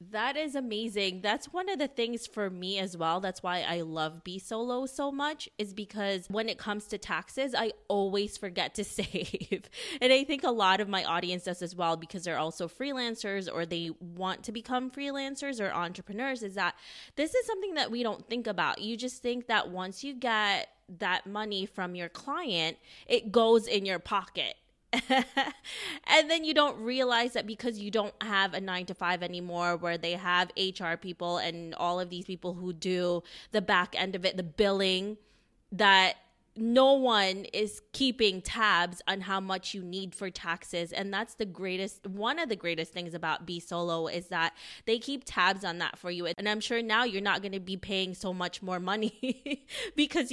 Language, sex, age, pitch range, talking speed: English, female, 20-39, 180-235 Hz, 195 wpm